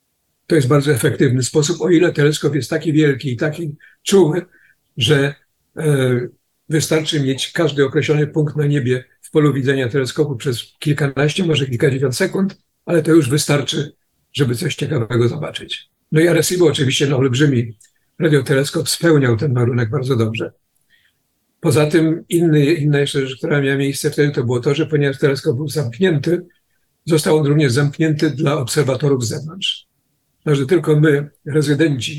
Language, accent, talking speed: Polish, native, 155 wpm